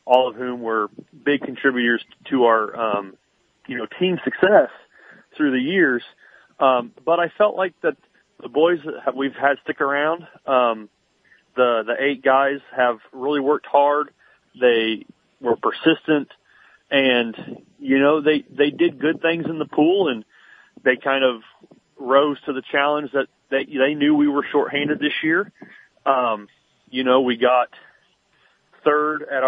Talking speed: 155 wpm